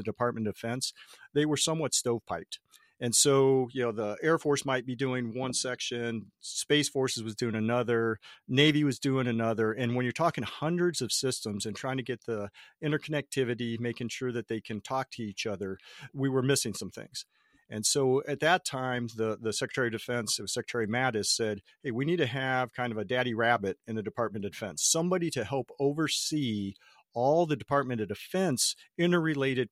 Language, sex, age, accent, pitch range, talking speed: English, male, 40-59, American, 110-135 Hz, 190 wpm